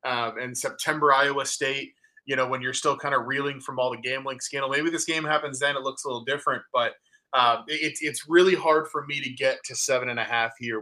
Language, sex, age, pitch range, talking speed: English, male, 20-39, 115-145 Hz, 245 wpm